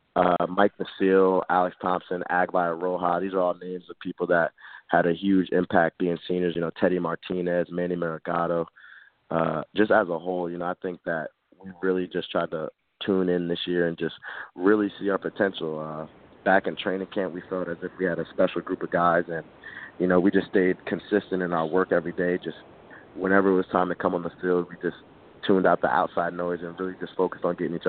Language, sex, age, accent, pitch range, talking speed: English, male, 20-39, American, 85-95 Hz, 220 wpm